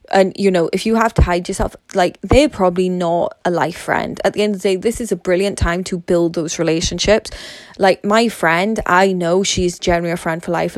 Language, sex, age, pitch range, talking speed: English, female, 20-39, 175-195 Hz, 235 wpm